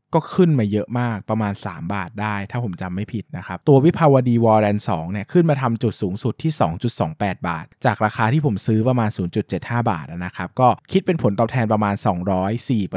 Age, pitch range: 20-39, 105-140 Hz